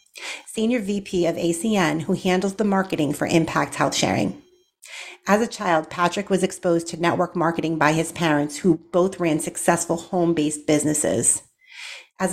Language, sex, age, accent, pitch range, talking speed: English, female, 40-59, American, 165-200 Hz, 150 wpm